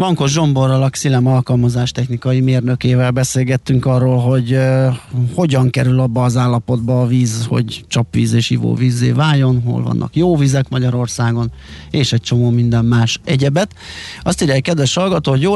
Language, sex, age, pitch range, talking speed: Hungarian, male, 30-49, 120-135 Hz, 150 wpm